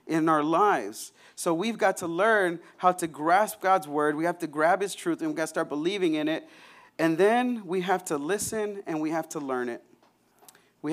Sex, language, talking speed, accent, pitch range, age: male, English, 220 wpm, American, 165-245 Hz, 40-59